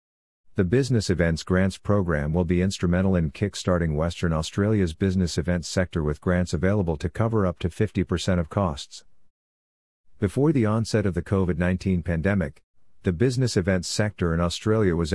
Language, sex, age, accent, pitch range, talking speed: English, male, 50-69, American, 85-100 Hz, 155 wpm